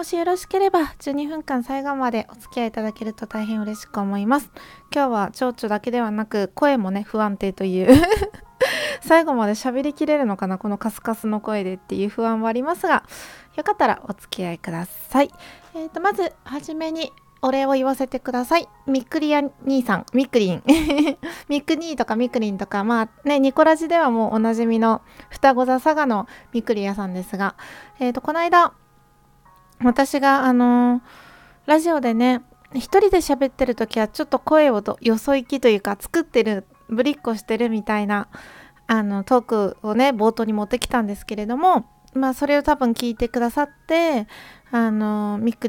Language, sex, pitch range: Japanese, female, 220-280 Hz